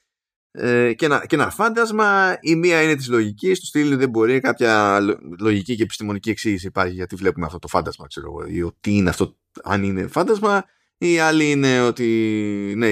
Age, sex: 20-39, male